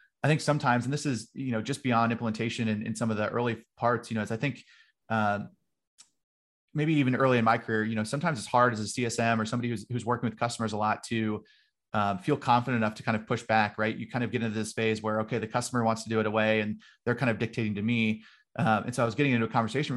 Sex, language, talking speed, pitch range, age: male, English, 270 wpm, 110-125 Hz, 30-49